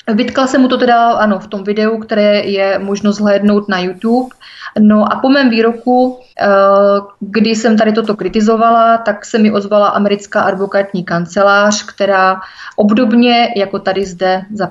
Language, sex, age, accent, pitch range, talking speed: Czech, female, 30-49, native, 195-220 Hz, 155 wpm